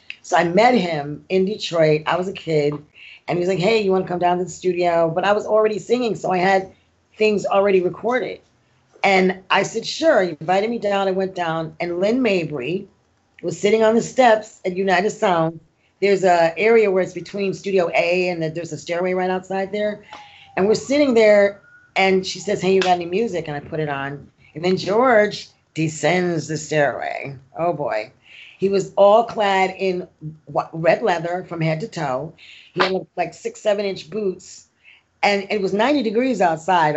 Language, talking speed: English, 195 wpm